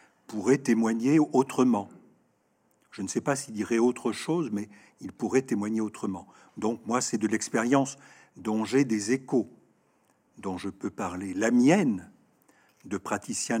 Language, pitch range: French, 110-160 Hz